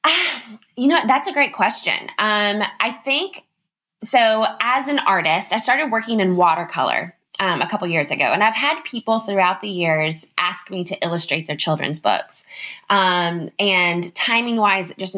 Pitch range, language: 170-215 Hz, English